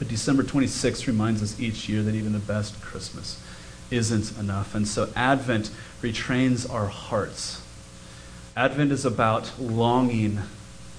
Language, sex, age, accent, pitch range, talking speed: English, male, 30-49, American, 100-125 Hz, 130 wpm